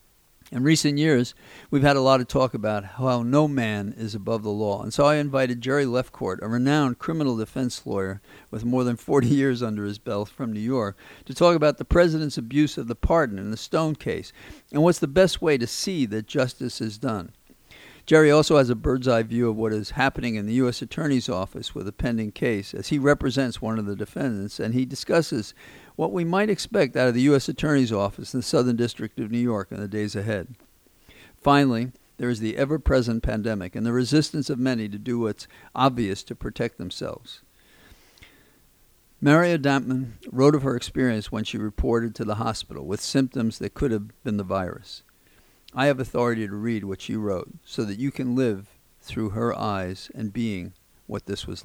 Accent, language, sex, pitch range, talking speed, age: American, English, male, 105-140 Hz, 200 wpm, 50-69